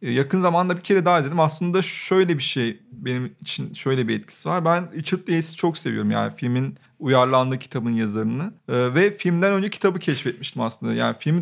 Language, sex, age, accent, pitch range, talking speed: Turkish, male, 30-49, native, 135-175 Hz, 180 wpm